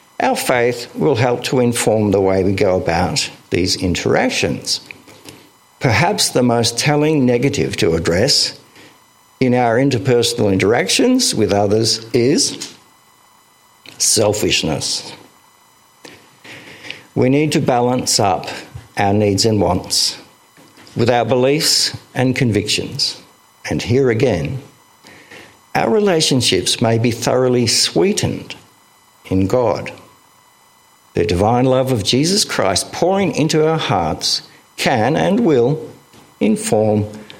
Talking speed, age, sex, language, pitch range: 110 wpm, 60-79, male, English, 105-140 Hz